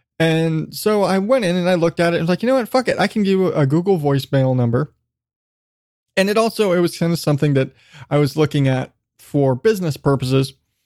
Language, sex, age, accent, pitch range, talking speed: English, male, 20-39, American, 135-190 Hz, 225 wpm